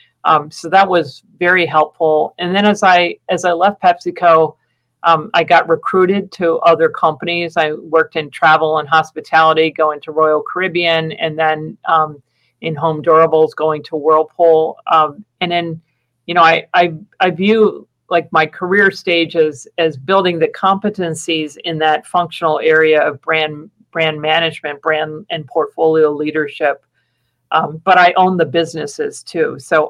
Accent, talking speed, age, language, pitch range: American, 155 wpm, 40-59, English, 155-175 Hz